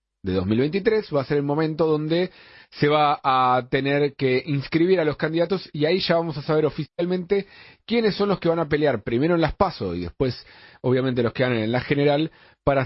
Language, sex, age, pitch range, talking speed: Spanish, male, 40-59, 105-155 Hz, 210 wpm